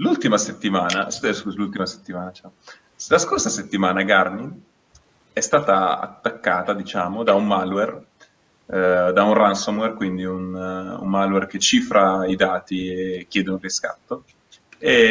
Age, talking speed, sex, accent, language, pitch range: 30-49, 135 wpm, male, native, Italian, 90-100 Hz